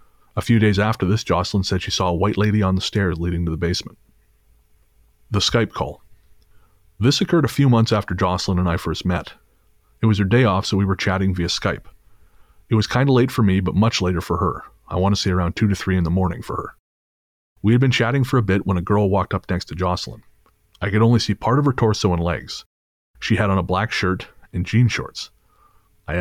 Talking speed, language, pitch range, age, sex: 235 wpm, English, 90-110 Hz, 30-49, male